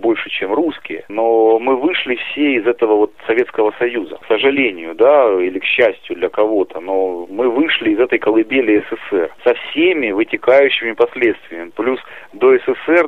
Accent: native